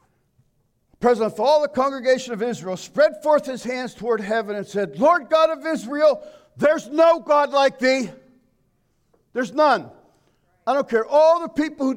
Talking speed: 165 wpm